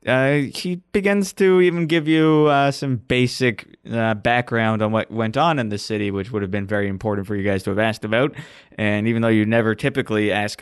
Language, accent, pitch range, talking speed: English, American, 100-125 Hz, 220 wpm